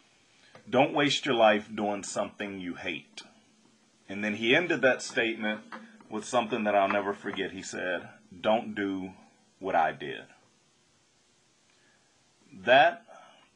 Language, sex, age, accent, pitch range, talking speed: English, male, 40-59, American, 95-120 Hz, 125 wpm